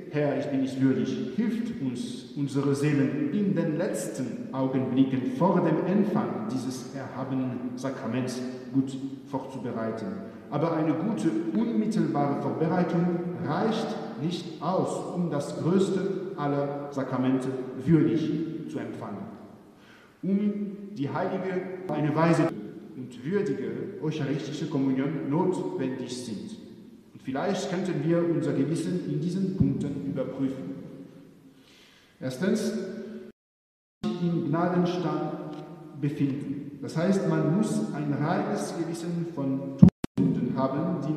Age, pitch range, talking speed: 50-69, 140-180 Hz, 105 wpm